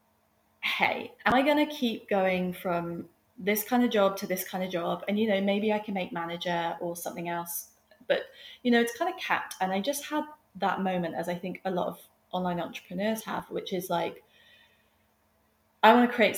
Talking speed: 205 wpm